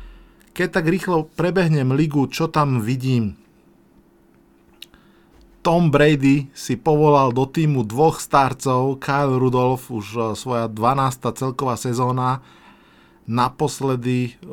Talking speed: 100 wpm